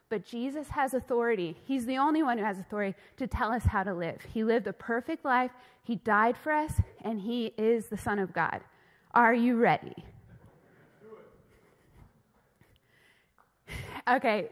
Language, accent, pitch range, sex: English, American, 210-260 Hz, female